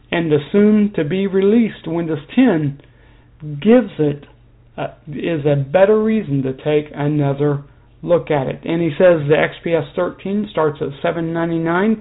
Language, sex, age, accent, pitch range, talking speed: English, male, 60-79, American, 145-180 Hz, 135 wpm